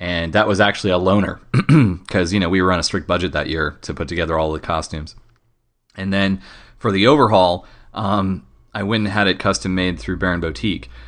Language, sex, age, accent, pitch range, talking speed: English, male, 30-49, American, 90-105 Hz, 210 wpm